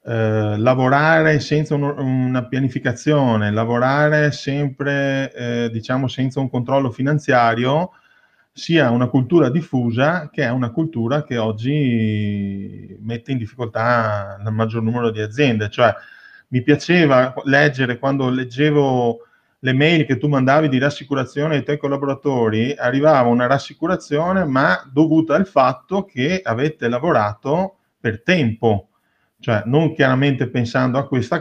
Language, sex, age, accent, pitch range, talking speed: Italian, male, 30-49, native, 115-150 Hz, 125 wpm